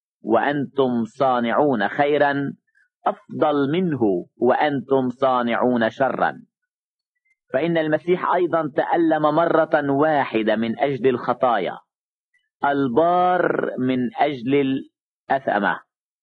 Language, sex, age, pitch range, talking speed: English, male, 50-69, 125-165 Hz, 80 wpm